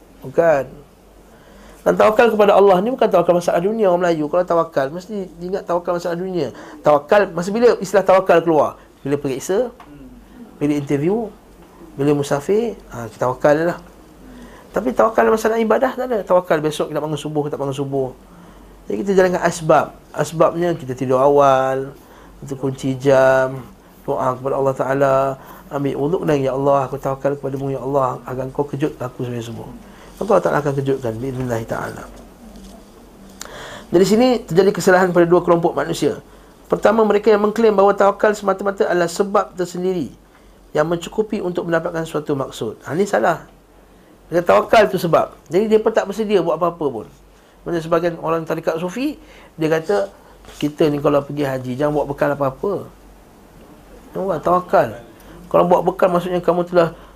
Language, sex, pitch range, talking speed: Malay, male, 140-195 Hz, 160 wpm